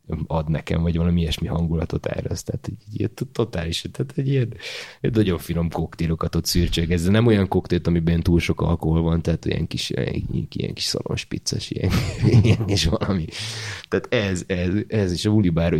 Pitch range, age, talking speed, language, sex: 85-100 Hz, 30-49, 150 wpm, English, male